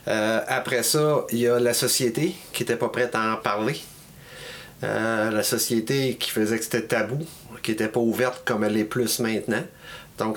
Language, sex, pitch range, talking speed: French, male, 105-120 Hz, 190 wpm